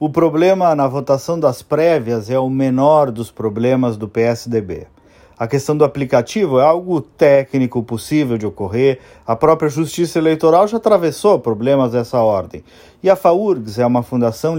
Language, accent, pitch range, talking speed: Portuguese, Brazilian, 120-185 Hz, 155 wpm